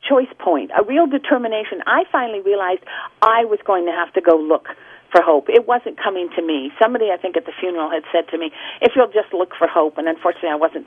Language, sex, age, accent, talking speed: English, female, 50-69, American, 235 wpm